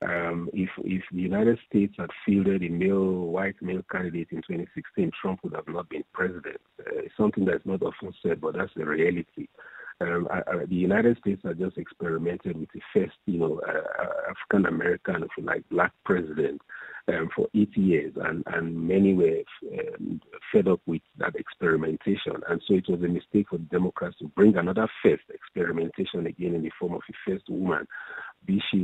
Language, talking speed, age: English, 185 wpm, 50-69